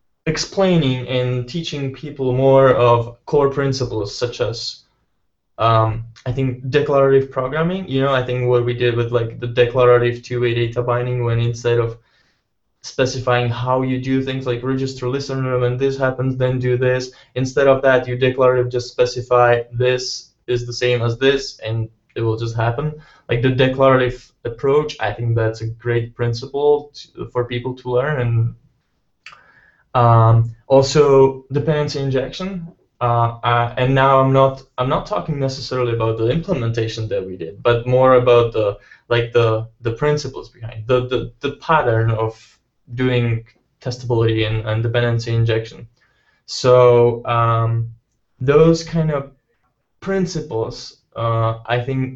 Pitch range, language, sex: 120-135 Hz, English, male